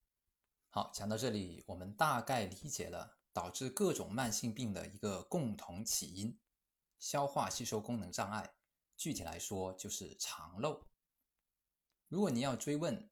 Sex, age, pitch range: male, 20-39, 100-135 Hz